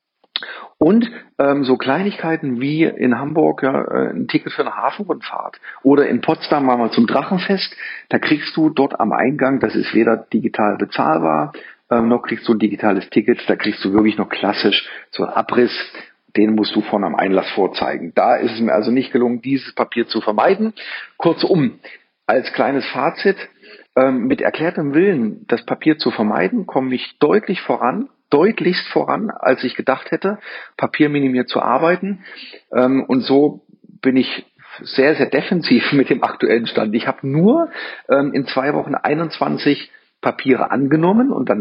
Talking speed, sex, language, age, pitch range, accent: 160 wpm, male, German, 50-69, 120-185 Hz, German